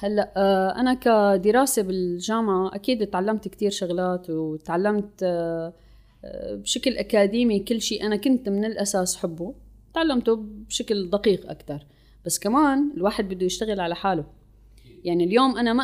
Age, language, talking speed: 20-39, Arabic, 125 wpm